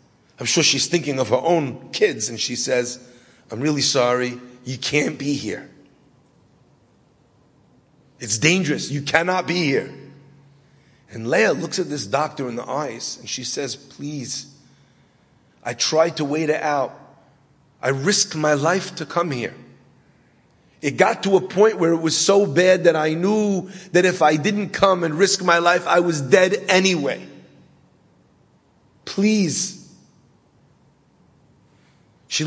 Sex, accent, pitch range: male, American, 140-190 Hz